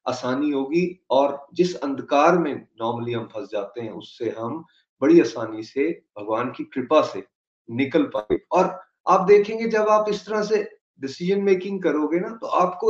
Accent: native